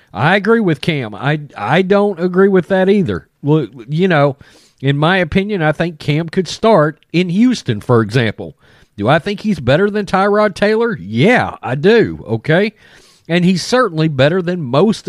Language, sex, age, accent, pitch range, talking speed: English, male, 40-59, American, 135-185 Hz, 175 wpm